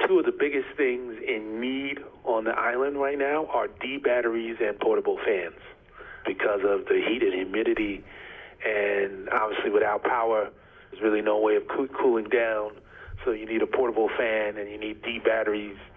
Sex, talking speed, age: male, 165 wpm, 40-59